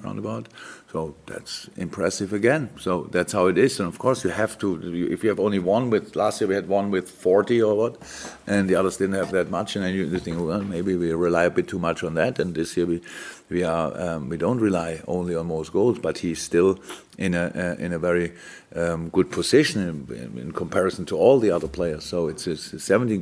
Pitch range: 85-95 Hz